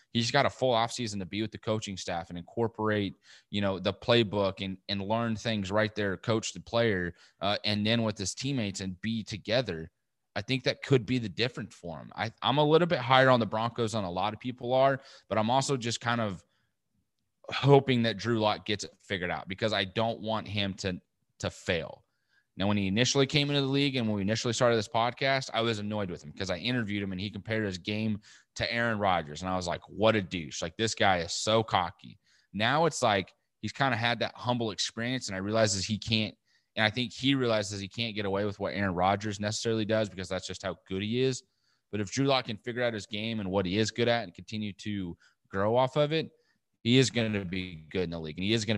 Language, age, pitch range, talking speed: English, 30-49, 100-120 Hz, 245 wpm